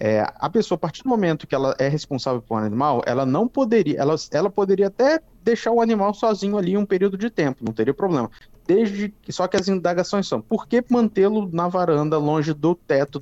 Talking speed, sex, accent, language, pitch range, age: 205 wpm, male, Brazilian, Portuguese, 130-200 Hz, 20-39